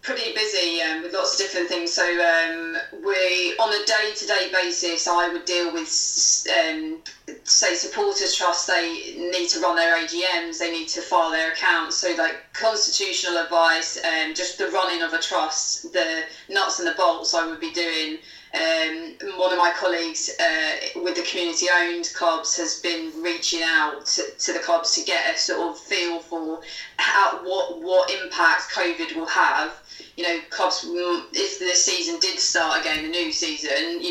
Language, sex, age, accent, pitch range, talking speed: English, female, 20-39, British, 165-185 Hz, 175 wpm